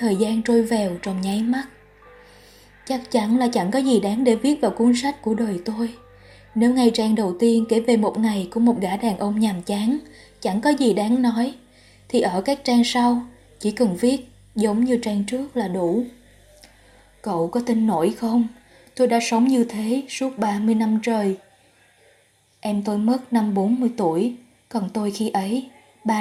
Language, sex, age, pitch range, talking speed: Vietnamese, female, 20-39, 205-240 Hz, 190 wpm